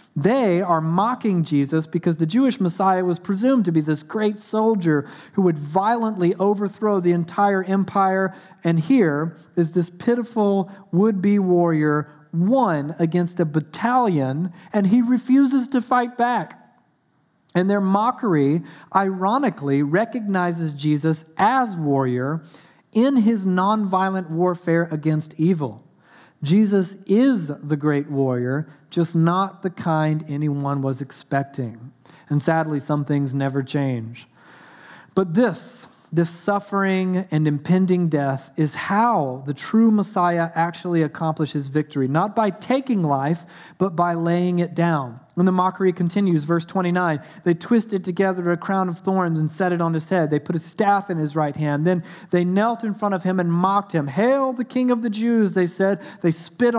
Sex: male